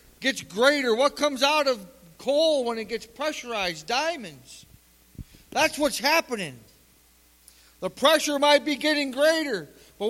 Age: 40-59